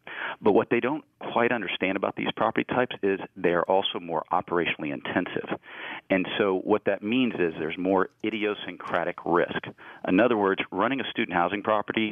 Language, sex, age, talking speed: English, male, 40-59, 170 wpm